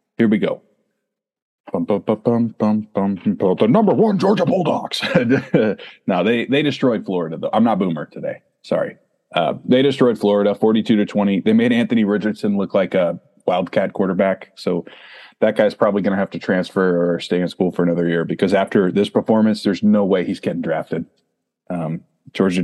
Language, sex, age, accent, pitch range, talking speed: English, male, 30-49, American, 95-120 Hz, 165 wpm